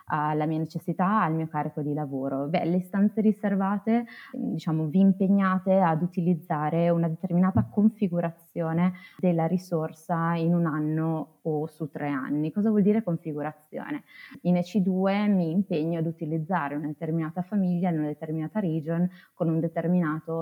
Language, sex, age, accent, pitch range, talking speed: Italian, female, 20-39, native, 155-185 Hz, 140 wpm